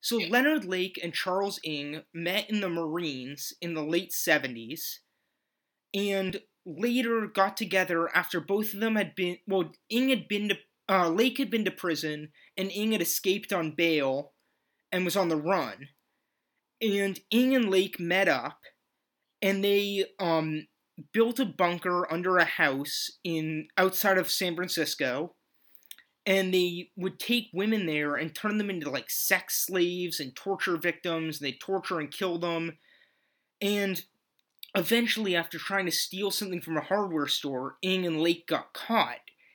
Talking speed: 155 wpm